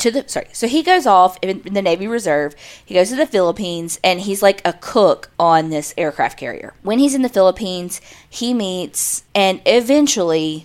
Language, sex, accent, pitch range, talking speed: English, female, American, 160-230 Hz, 190 wpm